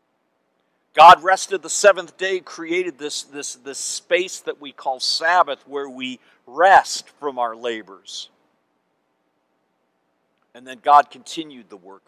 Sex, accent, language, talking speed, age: male, American, English, 125 wpm, 50-69